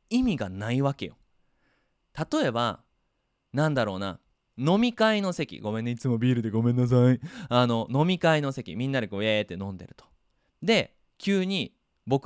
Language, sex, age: Japanese, male, 20-39